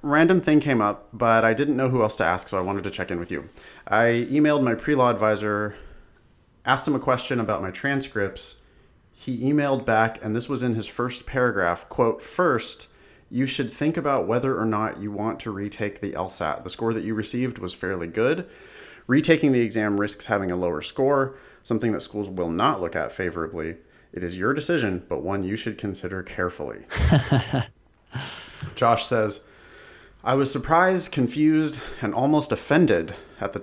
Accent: American